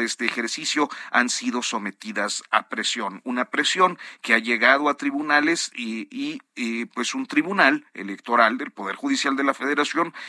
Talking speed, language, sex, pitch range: 155 wpm, Spanish, male, 110-145 Hz